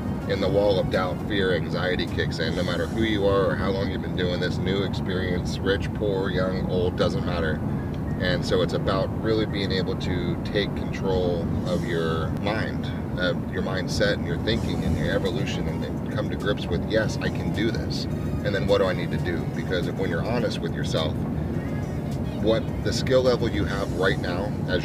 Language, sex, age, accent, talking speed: English, male, 30-49, American, 205 wpm